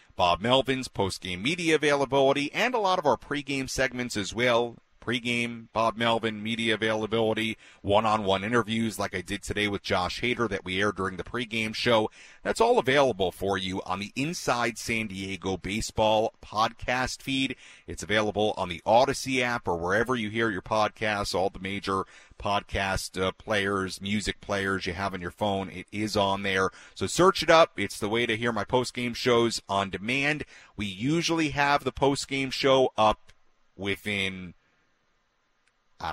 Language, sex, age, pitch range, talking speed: English, male, 40-59, 95-125 Hz, 165 wpm